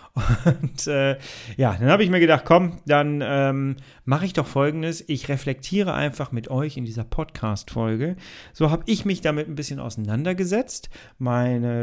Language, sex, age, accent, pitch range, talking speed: German, male, 40-59, German, 120-150 Hz, 160 wpm